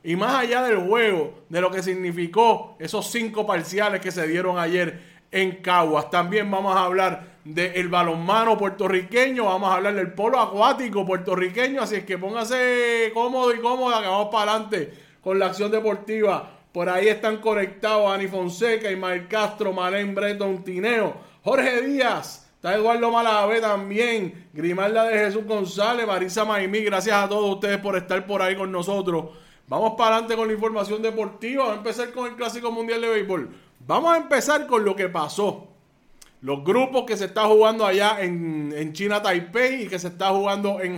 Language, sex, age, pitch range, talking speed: Spanish, male, 30-49, 185-225 Hz, 175 wpm